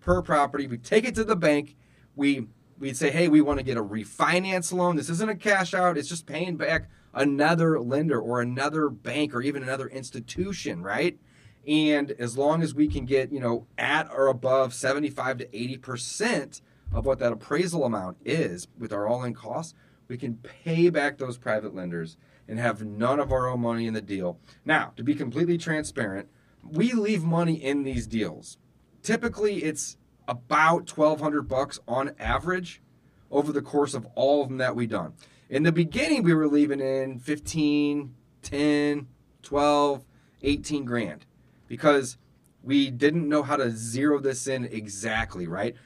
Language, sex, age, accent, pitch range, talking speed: English, male, 30-49, American, 120-150 Hz, 170 wpm